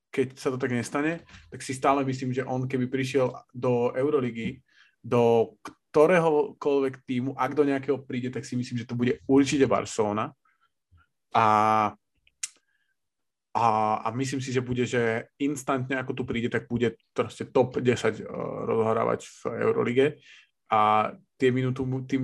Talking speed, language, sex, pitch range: 150 wpm, Slovak, male, 115-130 Hz